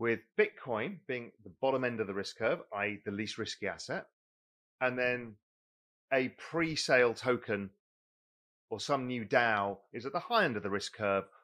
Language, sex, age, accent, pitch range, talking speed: English, male, 30-49, British, 115-155 Hz, 175 wpm